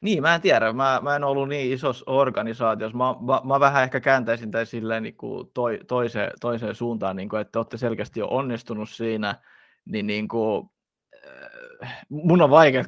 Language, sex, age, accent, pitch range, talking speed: Finnish, male, 20-39, native, 115-130 Hz, 185 wpm